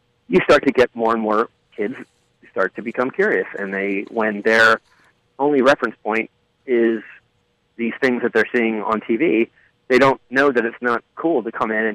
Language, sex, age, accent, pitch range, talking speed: English, male, 30-49, American, 110-125 Hz, 190 wpm